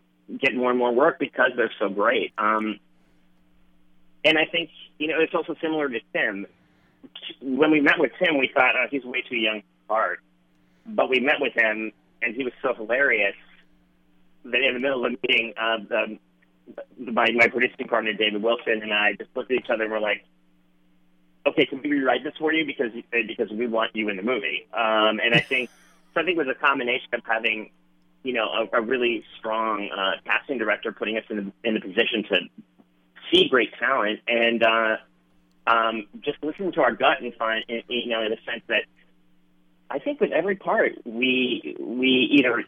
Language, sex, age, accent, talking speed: English, male, 40-59, American, 195 wpm